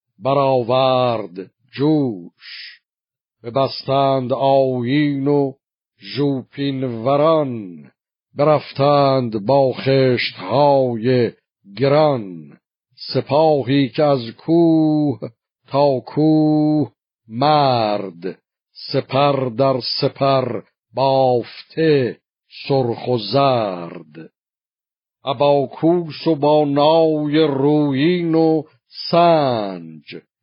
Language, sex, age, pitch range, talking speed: Persian, male, 50-69, 125-145 Hz, 60 wpm